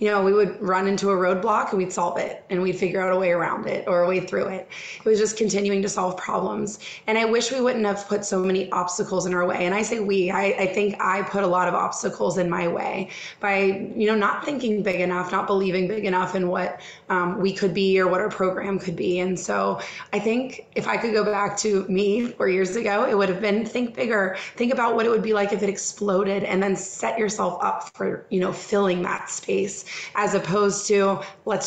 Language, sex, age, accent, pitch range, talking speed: English, female, 20-39, American, 185-205 Hz, 245 wpm